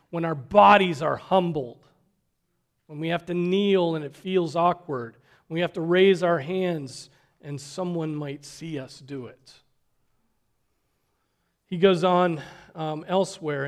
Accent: American